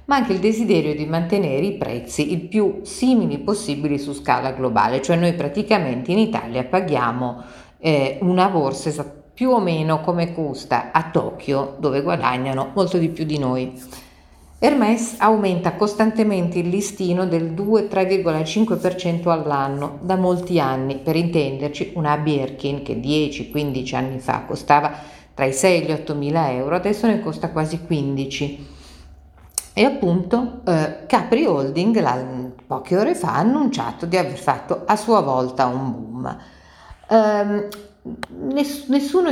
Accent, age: native, 40-59